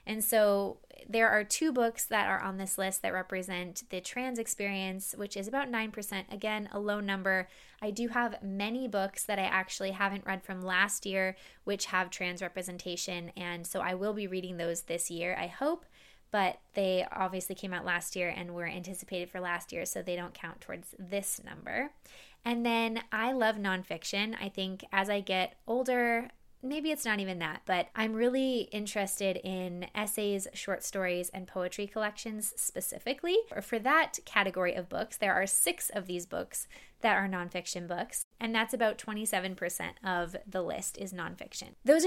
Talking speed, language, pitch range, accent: 185 wpm, English, 185-230 Hz, American